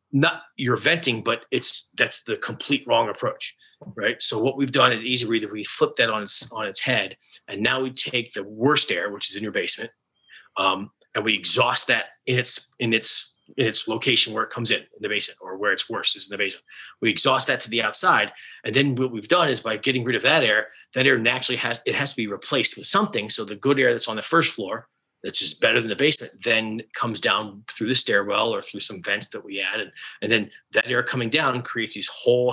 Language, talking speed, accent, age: English, 240 wpm, American, 30-49